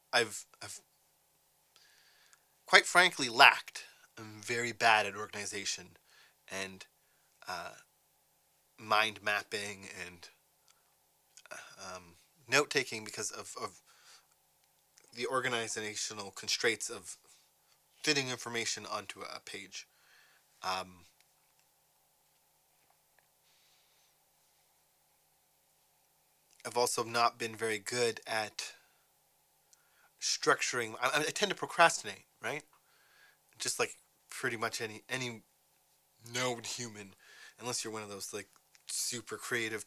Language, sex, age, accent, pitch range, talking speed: English, male, 20-39, American, 105-145 Hz, 90 wpm